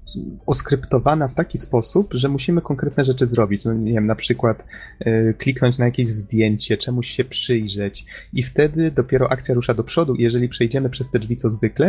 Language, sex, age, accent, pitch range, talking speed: Polish, male, 20-39, native, 110-130 Hz, 175 wpm